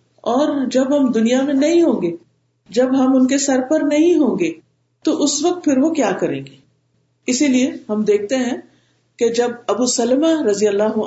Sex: female